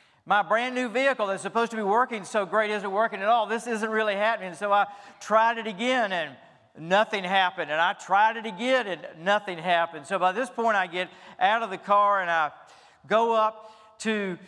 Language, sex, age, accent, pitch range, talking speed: English, male, 50-69, American, 175-215 Hz, 205 wpm